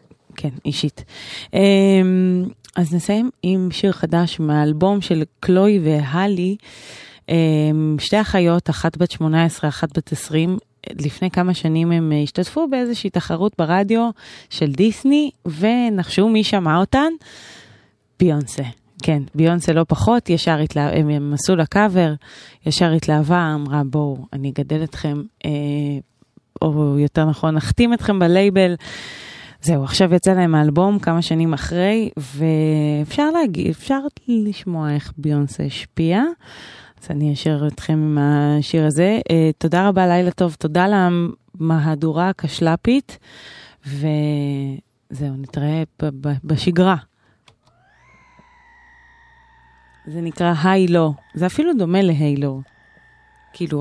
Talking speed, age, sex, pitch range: 110 wpm, 20-39, female, 150-190 Hz